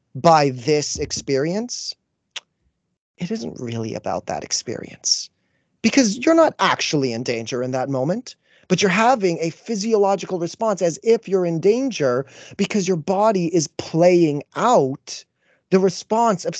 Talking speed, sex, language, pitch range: 135 wpm, male, English, 140-185 Hz